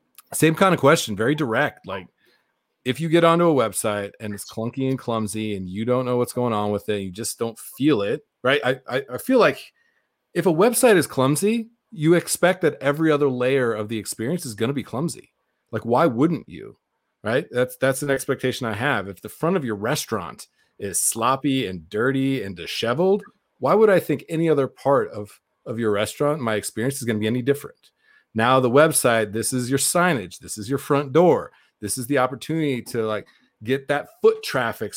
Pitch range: 110-150 Hz